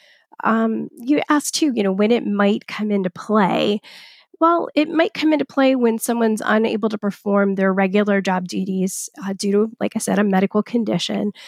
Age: 30-49